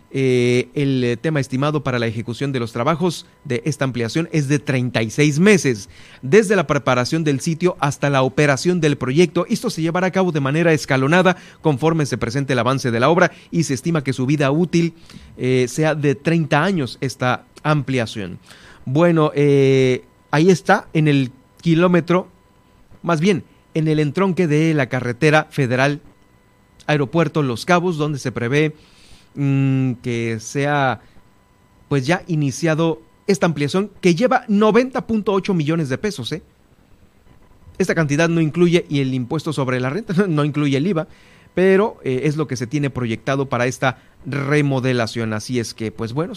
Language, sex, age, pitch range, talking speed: Spanish, male, 40-59, 125-165 Hz, 160 wpm